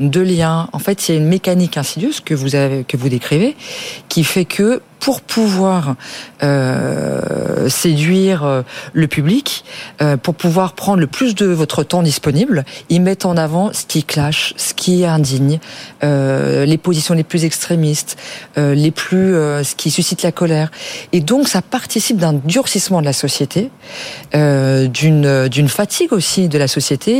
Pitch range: 145-200 Hz